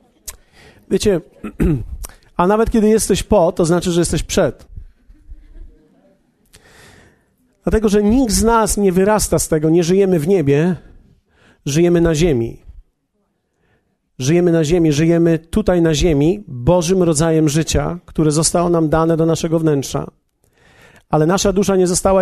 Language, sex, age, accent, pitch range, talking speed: Polish, male, 40-59, native, 160-195 Hz, 130 wpm